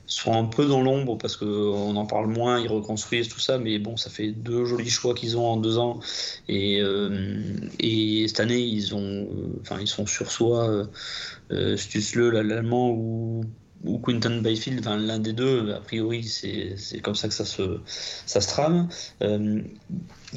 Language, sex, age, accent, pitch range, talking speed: French, male, 30-49, French, 105-125 Hz, 185 wpm